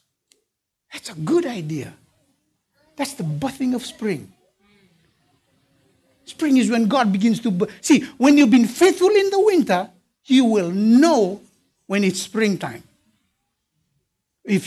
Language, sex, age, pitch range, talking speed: English, male, 60-79, 185-265 Hz, 125 wpm